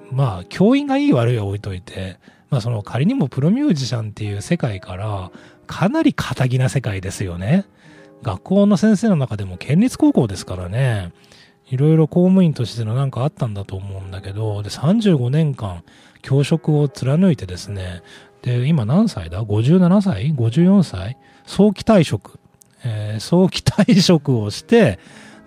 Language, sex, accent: Japanese, male, native